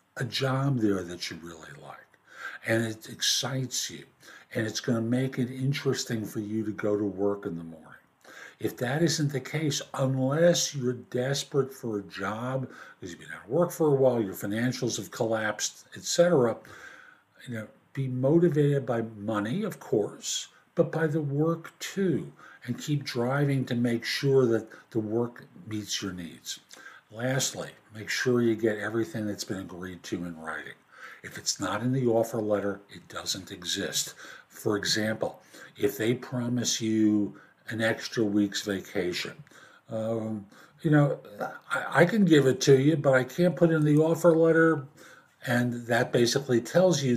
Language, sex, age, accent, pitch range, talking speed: English, male, 60-79, American, 105-140 Hz, 165 wpm